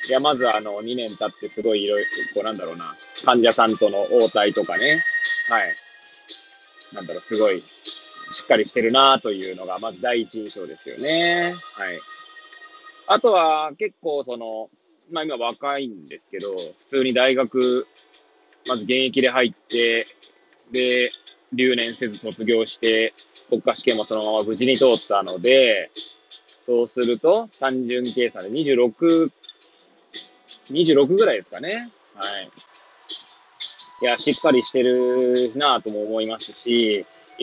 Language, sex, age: Japanese, male, 20-39